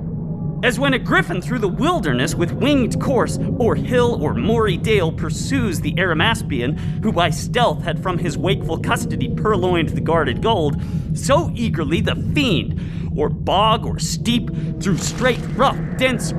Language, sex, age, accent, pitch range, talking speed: English, male, 40-59, American, 160-180 Hz, 155 wpm